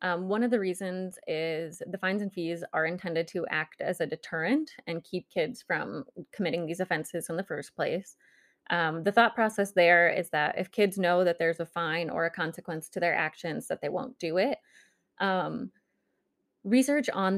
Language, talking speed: English, 195 wpm